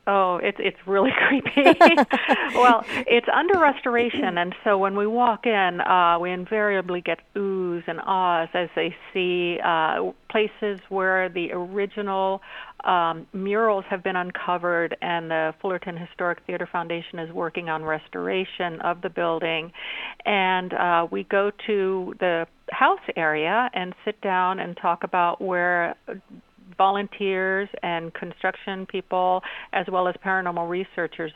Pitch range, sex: 170-195 Hz, female